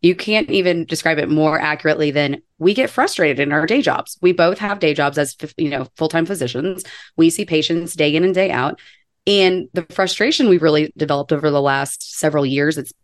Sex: female